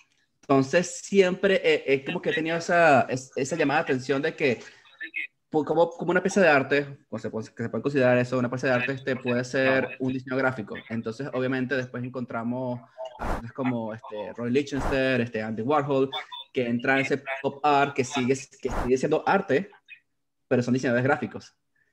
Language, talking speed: Spanish, 175 wpm